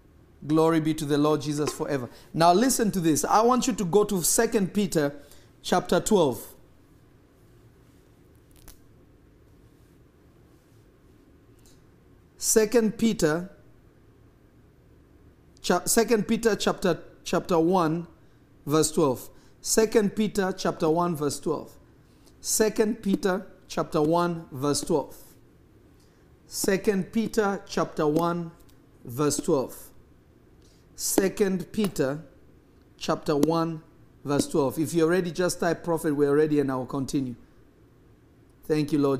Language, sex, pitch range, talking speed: English, male, 150-205 Hz, 110 wpm